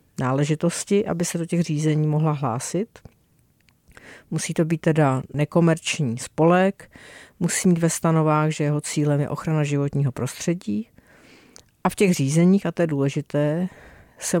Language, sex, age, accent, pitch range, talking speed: Czech, female, 50-69, native, 145-170 Hz, 135 wpm